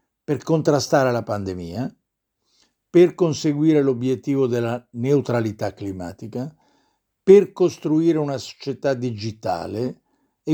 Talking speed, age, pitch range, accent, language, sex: 90 wpm, 50-69, 115-150 Hz, native, Italian, male